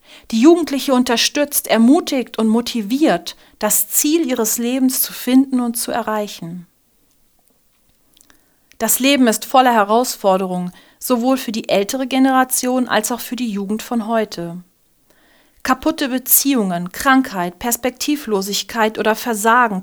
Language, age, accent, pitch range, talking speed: German, 40-59, German, 195-255 Hz, 115 wpm